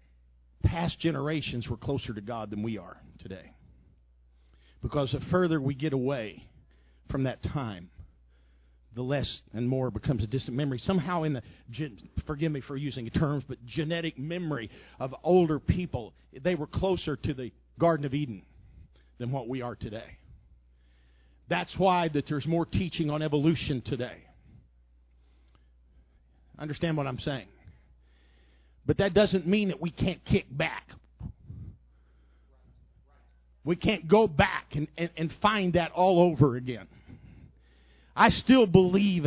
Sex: male